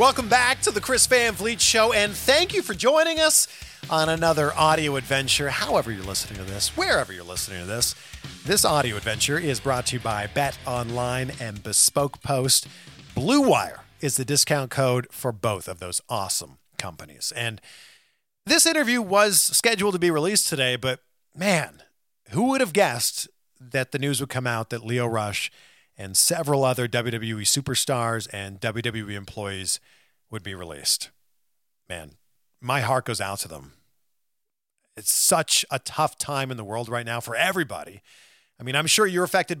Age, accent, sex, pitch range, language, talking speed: 40-59, American, male, 115-160 Hz, English, 170 wpm